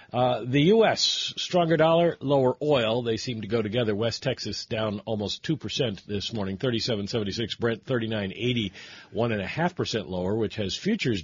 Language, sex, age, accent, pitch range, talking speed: English, male, 50-69, American, 105-130 Hz, 145 wpm